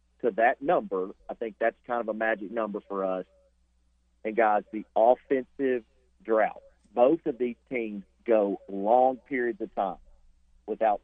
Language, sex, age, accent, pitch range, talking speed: English, male, 40-59, American, 100-130 Hz, 150 wpm